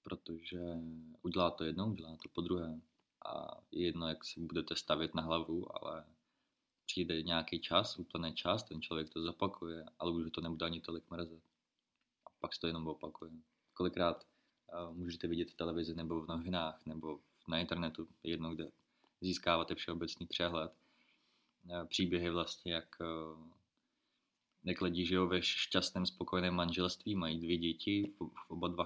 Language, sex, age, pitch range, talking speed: Czech, male, 20-39, 80-90 Hz, 150 wpm